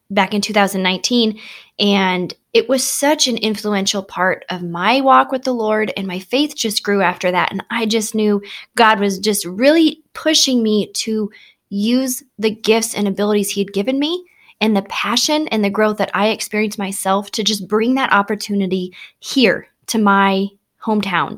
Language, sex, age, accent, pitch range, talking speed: English, female, 20-39, American, 195-235 Hz, 175 wpm